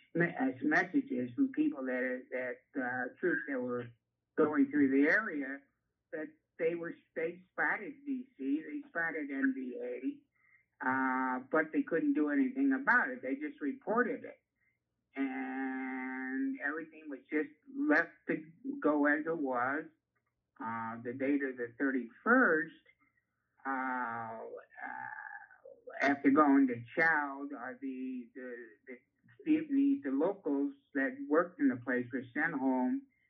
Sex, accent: male, American